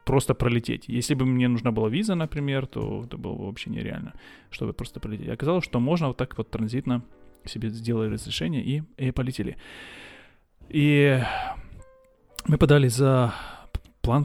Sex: male